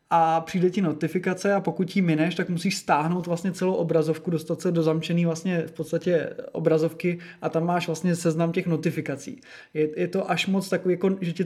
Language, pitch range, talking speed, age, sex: Czech, 165-180 Hz, 200 wpm, 20-39, male